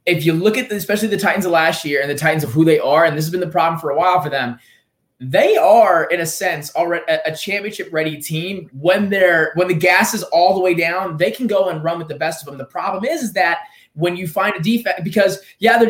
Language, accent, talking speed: English, American, 270 wpm